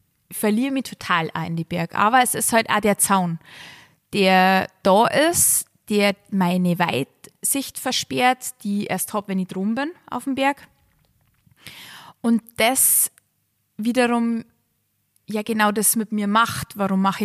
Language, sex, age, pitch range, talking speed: German, female, 20-39, 185-235 Hz, 150 wpm